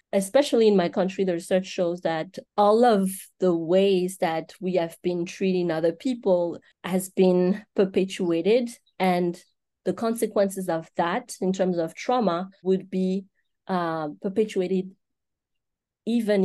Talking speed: 130 wpm